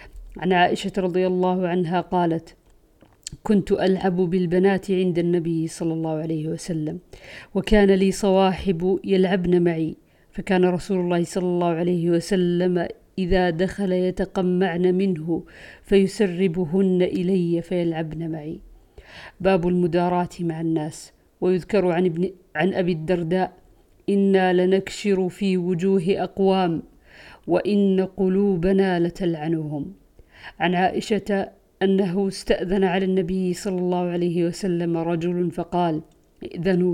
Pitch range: 175-195 Hz